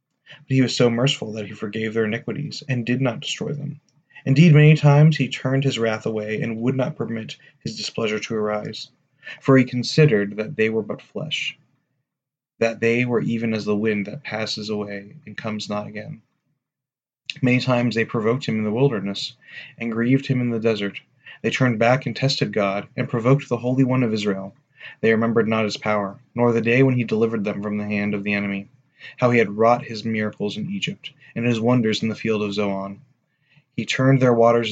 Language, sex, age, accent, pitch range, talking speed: English, male, 30-49, American, 110-135 Hz, 205 wpm